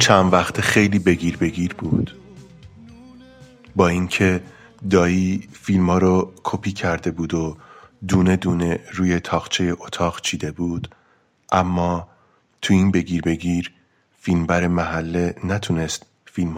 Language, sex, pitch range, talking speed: English, male, 85-100 Hz, 115 wpm